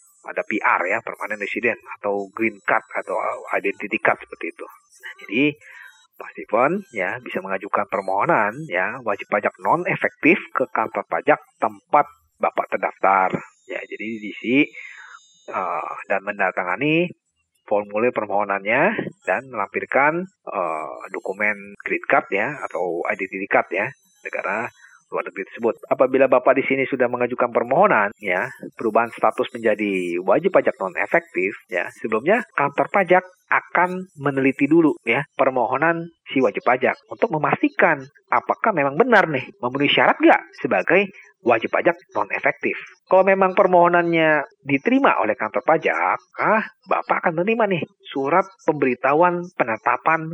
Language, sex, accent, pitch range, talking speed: Indonesian, male, native, 115-180 Hz, 130 wpm